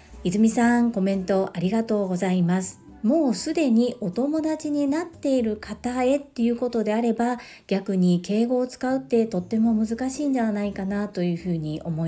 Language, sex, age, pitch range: Japanese, female, 40-59, 180-240 Hz